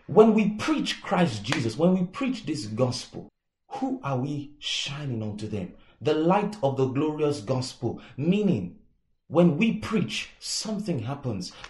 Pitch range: 125-185 Hz